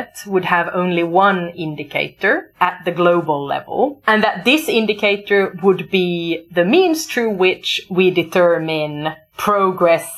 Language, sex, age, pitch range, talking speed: English, female, 30-49, 170-220 Hz, 130 wpm